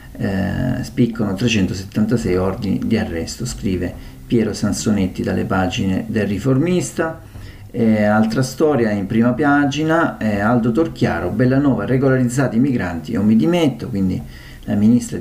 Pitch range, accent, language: 110-135 Hz, native, Italian